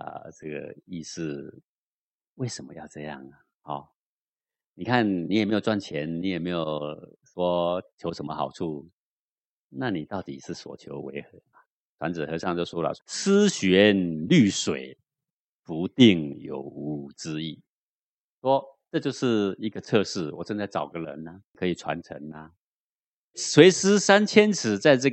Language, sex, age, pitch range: Chinese, male, 50-69, 85-120 Hz